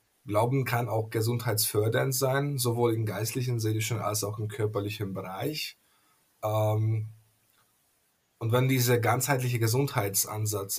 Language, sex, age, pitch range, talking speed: German, male, 20-39, 105-120 Hz, 105 wpm